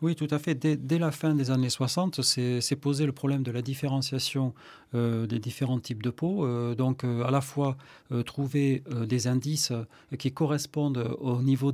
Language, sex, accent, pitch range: French, male, French, 125-150 Hz